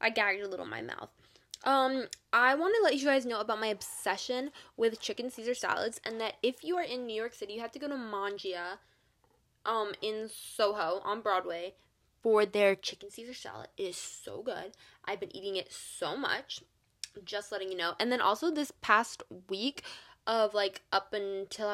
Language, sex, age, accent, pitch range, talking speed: English, female, 10-29, American, 195-250 Hz, 195 wpm